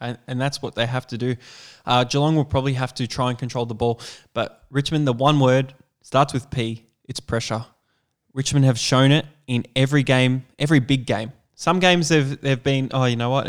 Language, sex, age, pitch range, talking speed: English, male, 10-29, 120-140 Hz, 220 wpm